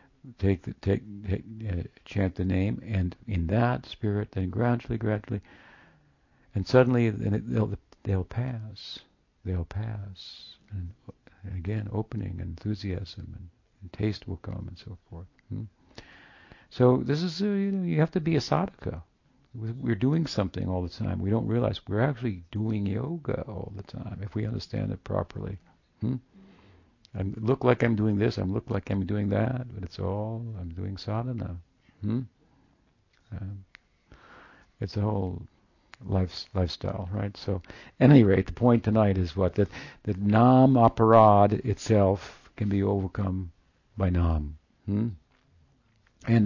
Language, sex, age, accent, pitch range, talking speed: English, male, 60-79, American, 95-115 Hz, 150 wpm